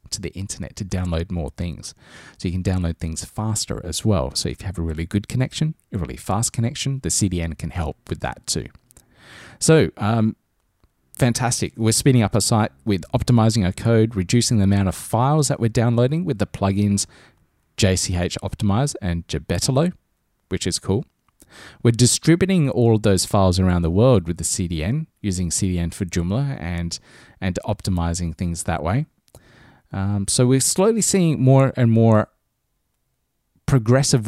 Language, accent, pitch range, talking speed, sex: English, Australian, 90-120 Hz, 165 wpm, male